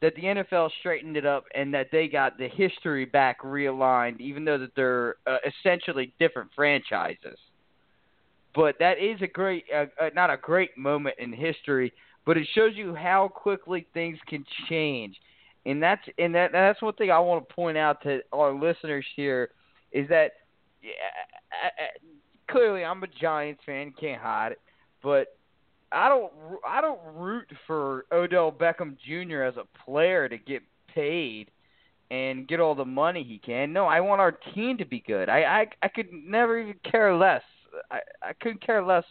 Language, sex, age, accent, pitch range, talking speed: English, male, 20-39, American, 145-200 Hz, 170 wpm